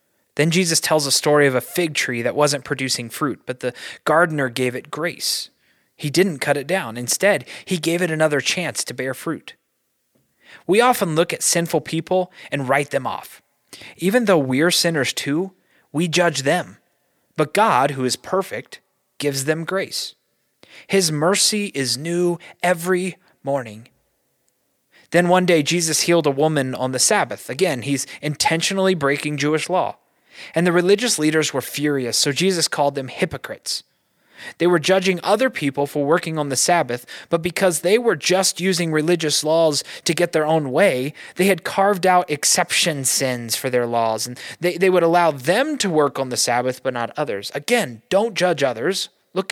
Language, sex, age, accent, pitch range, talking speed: English, male, 30-49, American, 135-180 Hz, 175 wpm